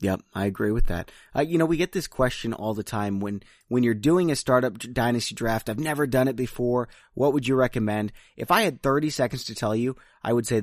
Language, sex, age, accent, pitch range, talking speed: English, male, 30-49, American, 110-135 Hz, 245 wpm